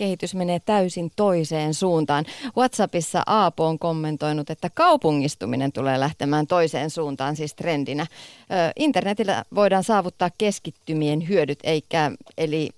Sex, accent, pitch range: female, native, 150-190 Hz